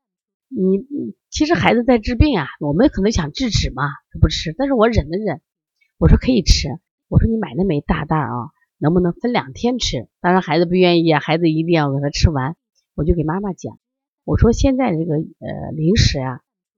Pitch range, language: 150-240 Hz, Chinese